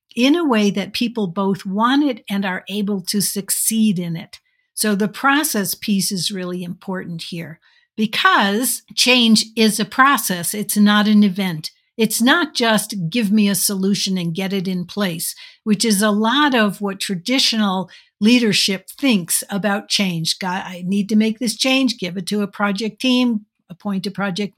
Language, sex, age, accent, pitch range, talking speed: English, female, 60-79, American, 185-225 Hz, 170 wpm